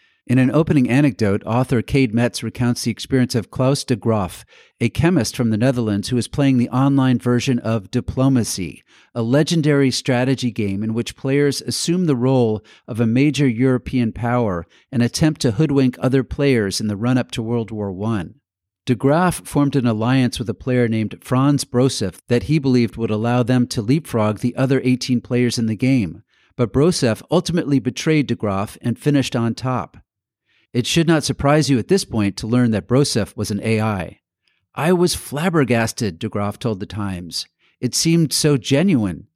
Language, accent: English, American